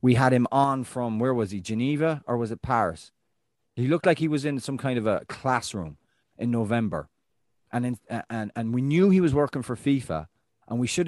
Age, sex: 30-49, male